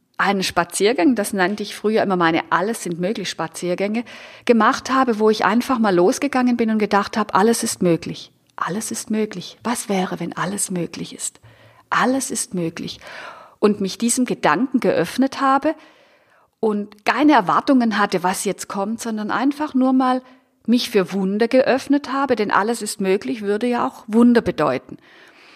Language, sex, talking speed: German, female, 155 wpm